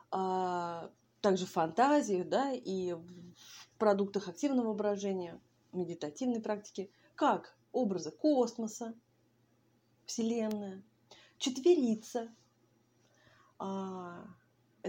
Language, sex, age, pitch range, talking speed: Russian, female, 20-39, 180-230 Hz, 70 wpm